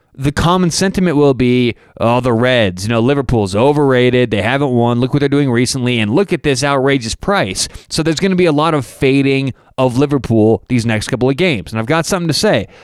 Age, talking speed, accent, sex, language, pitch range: 30-49, 225 wpm, American, male, English, 115-150 Hz